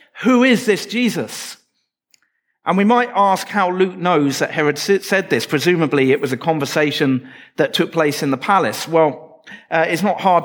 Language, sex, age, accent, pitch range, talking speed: English, male, 40-59, British, 145-185 Hz, 180 wpm